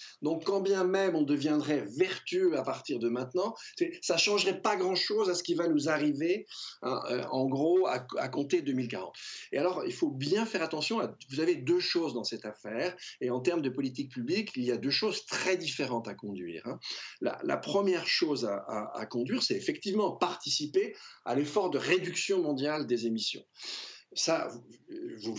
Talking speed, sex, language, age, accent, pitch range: 190 wpm, male, French, 50-69, French, 125-200 Hz